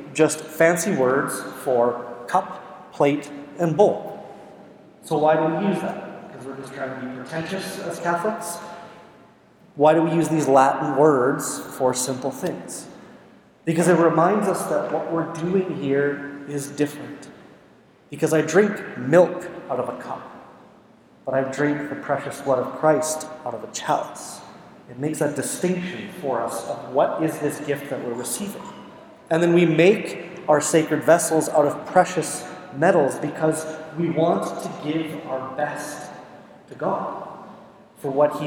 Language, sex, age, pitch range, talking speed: English, male, 30-49, 140-170 Hz, 160 wpm